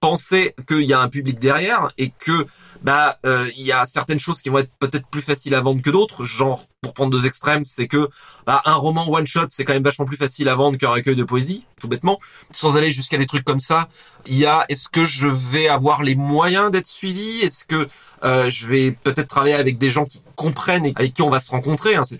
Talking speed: 250 wpm